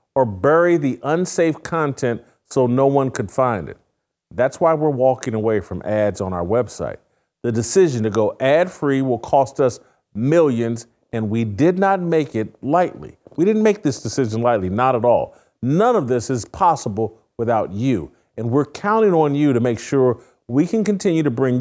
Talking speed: 185 wpm